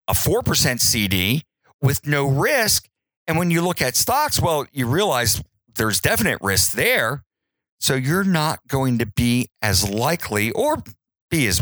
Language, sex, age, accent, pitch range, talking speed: English, male, 50-69, American, 100-130 Hz, 155 wpm